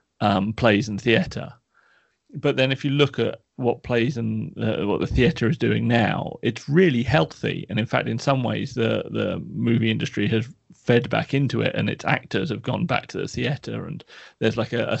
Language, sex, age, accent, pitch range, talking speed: English, male, 30-49, British, 110-125 Hz, 210 wpm